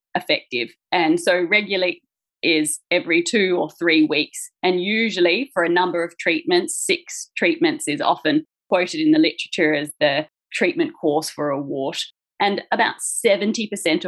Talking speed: 150 wpm